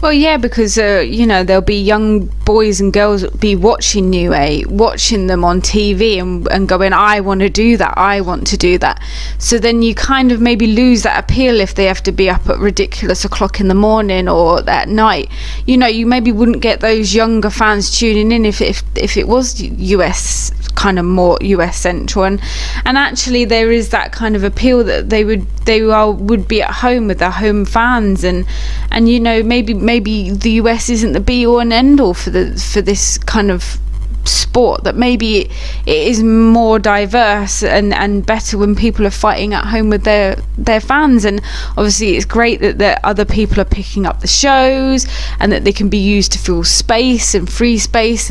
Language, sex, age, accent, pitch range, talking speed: English, female, 20-39, British, 200-230 Hz, 205 wpm